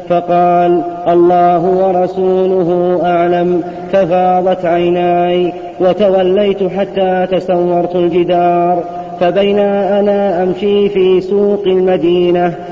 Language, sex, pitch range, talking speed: Arabic, male, 175-185 Hz, 75 wpm